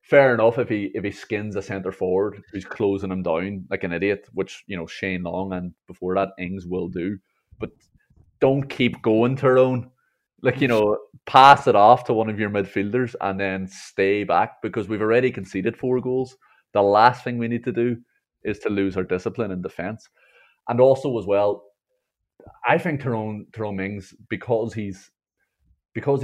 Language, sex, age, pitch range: English, male, 30-49, 95-110 Hz